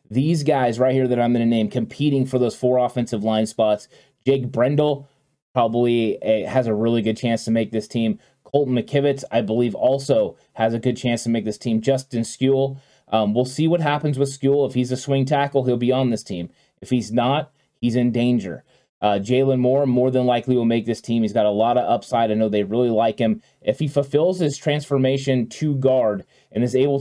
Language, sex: English, male